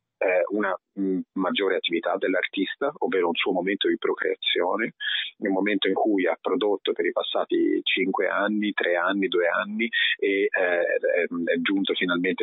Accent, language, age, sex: native, Italian, 30-49, male